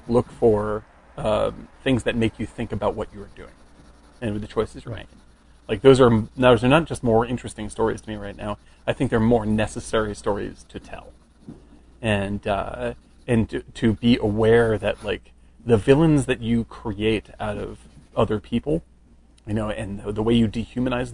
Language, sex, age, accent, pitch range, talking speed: English, male, 30-49, American, 105-125 Hz, 185 wpm